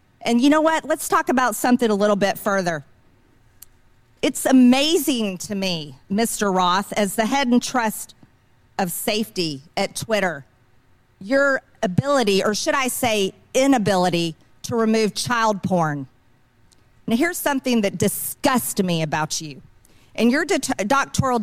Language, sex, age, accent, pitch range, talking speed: English, female, 40-59, American, 180-255 Hz, 135 wpm